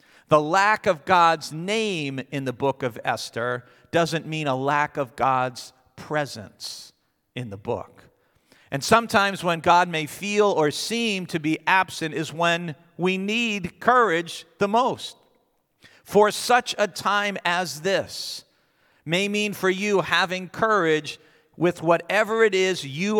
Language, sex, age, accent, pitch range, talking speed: English, male, 50-69, American, 155-200 Hz, 140 wpm